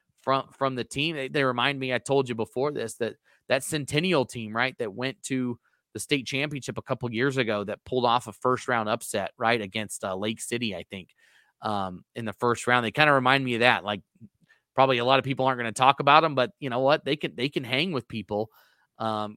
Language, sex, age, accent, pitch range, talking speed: English, male, 30-49, American, 110-145 Hz, 240 wpm